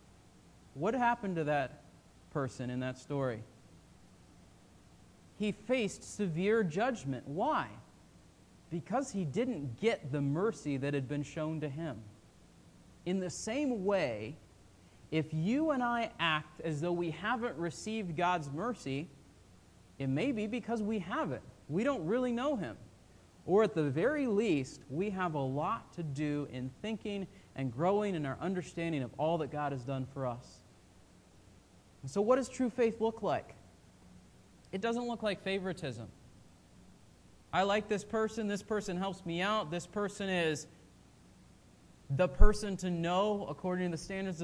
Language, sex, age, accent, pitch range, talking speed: English, male, 40-59, American, 140-205 Hz, 150 wpm